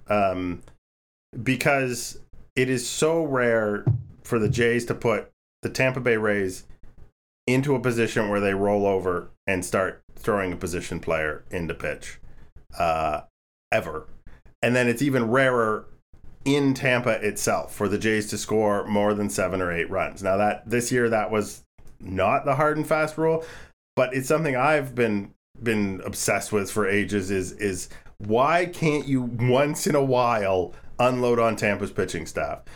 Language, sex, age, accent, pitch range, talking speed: English, male, 30-49, American, 100-130 Hz, 160 wpm